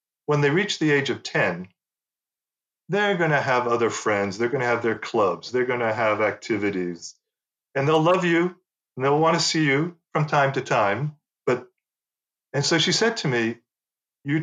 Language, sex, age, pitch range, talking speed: English, male, 40-59, 110-145 Hz, 190 wpm